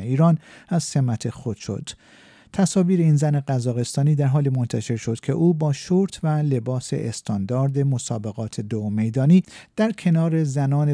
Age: 50-69